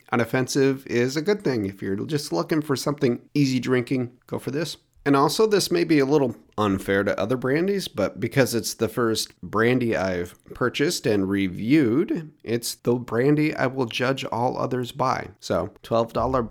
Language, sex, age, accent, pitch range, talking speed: English, male, 30-49, American, 110-150 Hz, 175 wpm